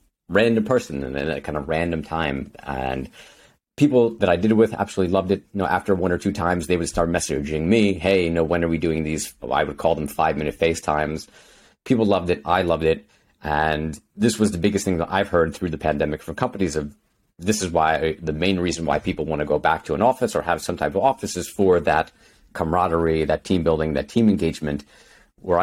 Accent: American